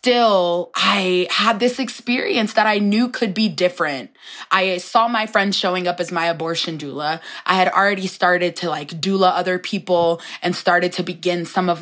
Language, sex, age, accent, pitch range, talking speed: English, female, 20-39, American, 170-195 Hz, 185 wpm